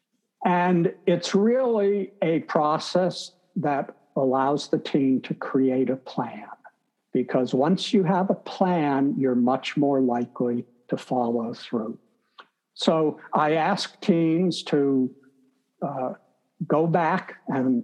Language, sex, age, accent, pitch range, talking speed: English, male, 60-79, American, 130-180 Hz, 120 wpm